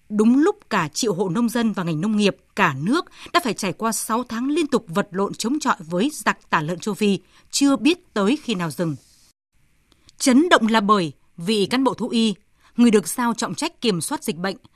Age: 20-39